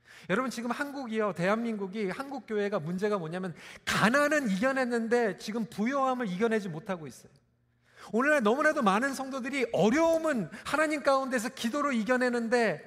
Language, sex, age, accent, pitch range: Korean, male, 40-59, native, 165-265 Hz